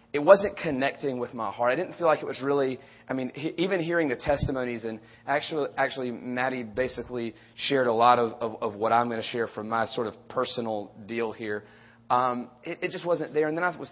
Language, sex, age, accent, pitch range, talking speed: English, male, 30-49, American, 120-145 Hz, 230 wpm